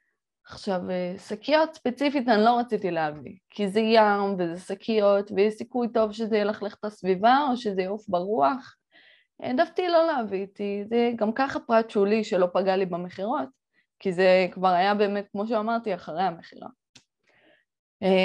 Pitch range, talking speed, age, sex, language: 200-265 Hz, 145 wpm, 20-39, female, Hebrew